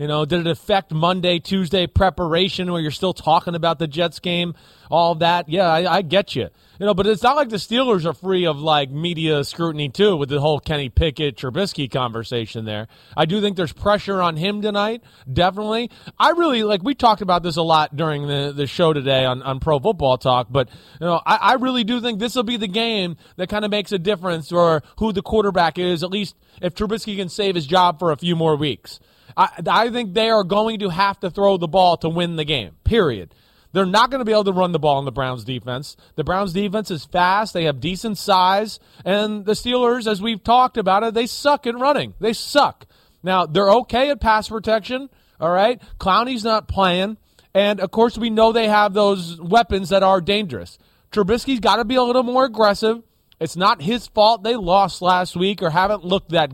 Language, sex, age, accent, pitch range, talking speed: English, male, 30-49, American, 160-215 Hz, 220 wpm